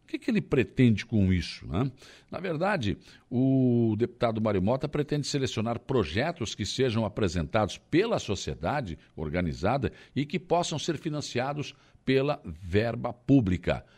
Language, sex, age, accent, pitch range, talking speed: Portuguese, male, 60-79, Brazilian, 105-140 Hz, 130 wpm